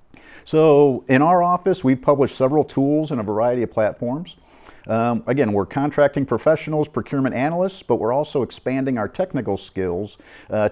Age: 50-69